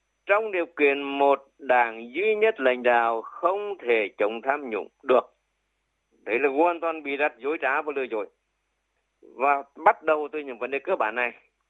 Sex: male